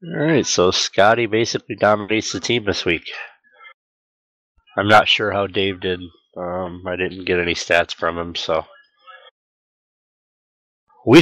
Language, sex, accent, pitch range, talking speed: English, male, American, 95-140 Hz, 135 wpm